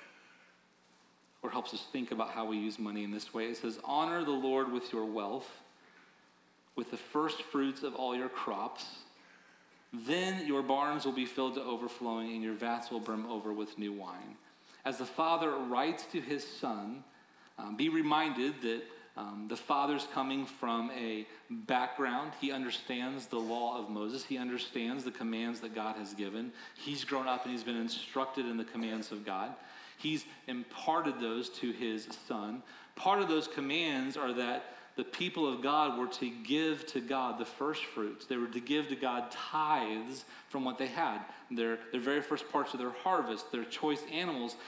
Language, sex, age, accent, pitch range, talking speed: English, male, 40-59, American, 115-140 Hz, 180 wpm